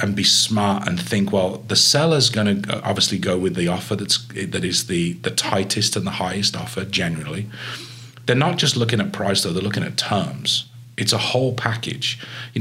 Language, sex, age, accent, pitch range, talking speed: English, male, 30-49, British, 100-125 Hz, 200 wpm